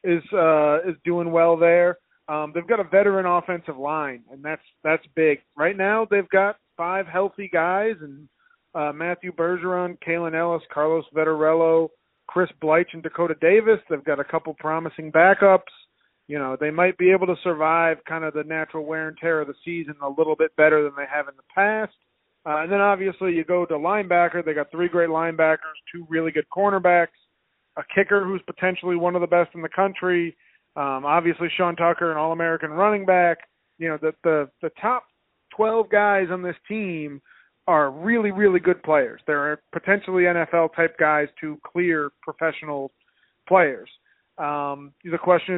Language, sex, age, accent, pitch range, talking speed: English, male, 40-59, American, 155-180 Hz, 175 wpm